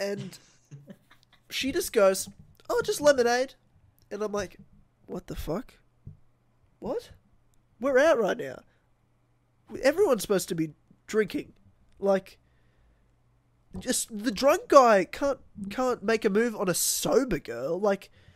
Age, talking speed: 20-39, 125 wpm